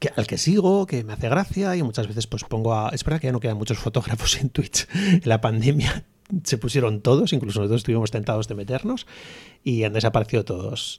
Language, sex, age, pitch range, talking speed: Spanish, male, 30-49, 110-140 Hz, 220 wpm